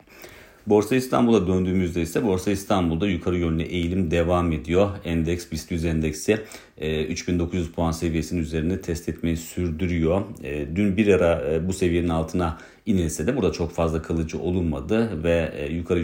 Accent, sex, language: native, male, Turkish